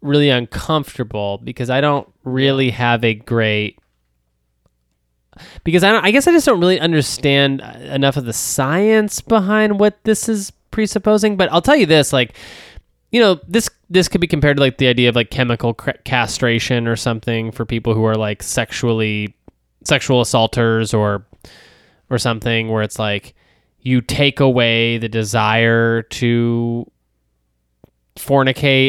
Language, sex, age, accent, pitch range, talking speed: English, male, 20-39, American, 115-155 Hz, 150 wpm